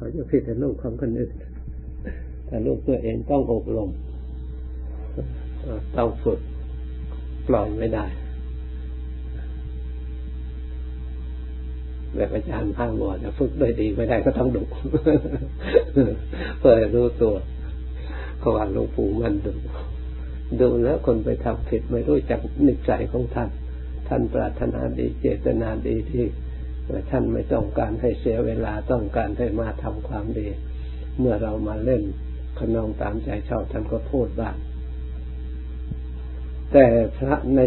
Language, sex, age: Thai, male, 60-79